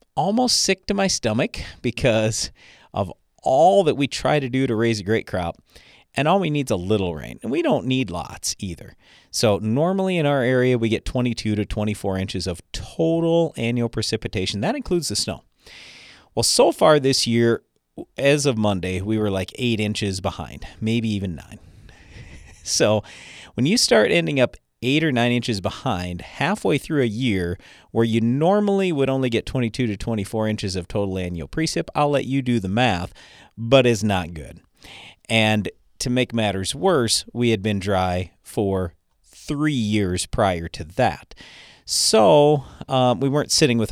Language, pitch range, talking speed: English, 95-130 Hz, 175 wpm